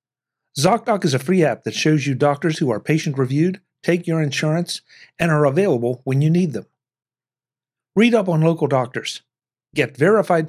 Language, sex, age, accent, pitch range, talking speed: English, male, 50-69, American, 130-160 Hz, 165 wpm